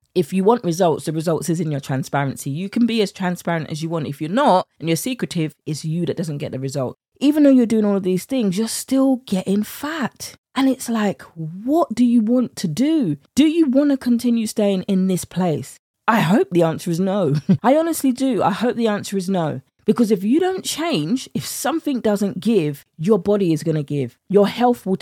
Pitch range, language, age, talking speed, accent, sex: 160-220 Hz, English, 20-39, 225 wpm, British, female